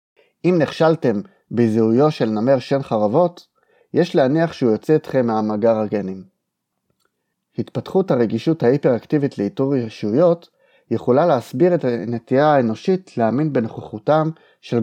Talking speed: 110 wpm